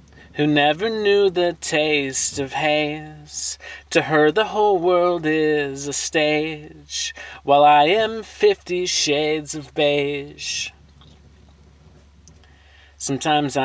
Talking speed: 100 wpm